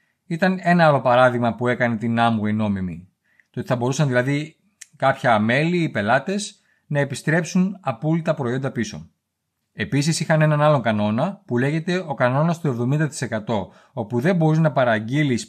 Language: Greek